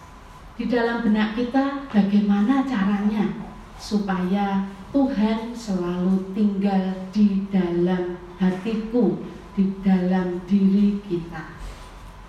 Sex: female